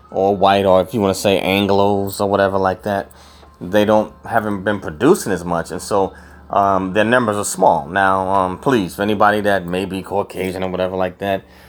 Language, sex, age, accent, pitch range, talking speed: English, male, 30-49, American, 90-105 Hz, 200 wpm